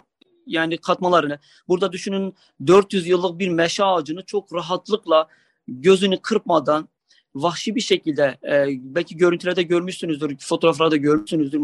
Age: 40-59